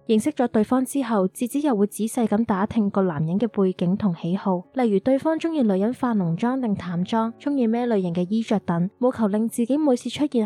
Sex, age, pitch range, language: female, 20-39, 190-240 Hz, Chinese